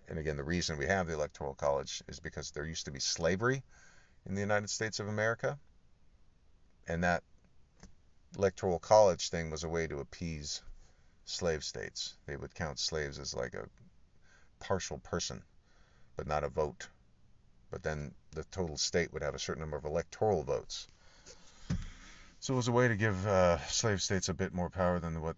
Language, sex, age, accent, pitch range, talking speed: English, male, 40-59, American, 80-105 Hz, 180 wpm